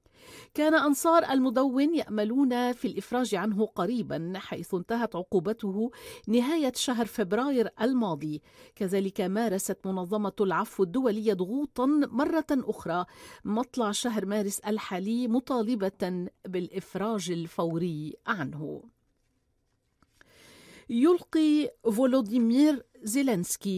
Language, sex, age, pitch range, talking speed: Arabic, female, 40-59, 195-260 Hz, 85 wpm